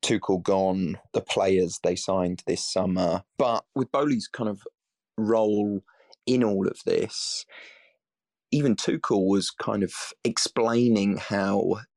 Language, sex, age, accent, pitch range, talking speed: English, male, 20-39, British, 95-110 Hz, 125 wpm